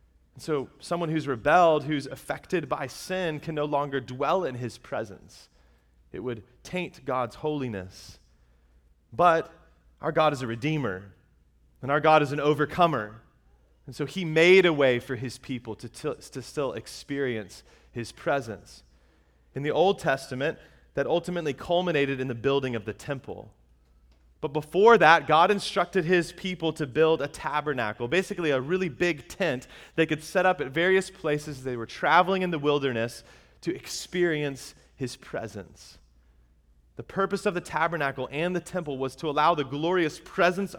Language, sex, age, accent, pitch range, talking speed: English, male, 30-49, American, 115-160 Hz, 160 wpm